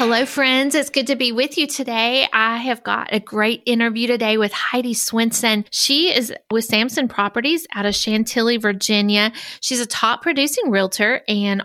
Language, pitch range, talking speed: English, 205-260 Hz, 175 wpm